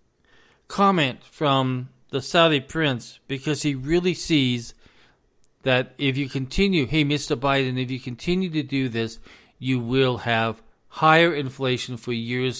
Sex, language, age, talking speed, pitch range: male, English, 40-59, 140 wpm, 120-160 Hz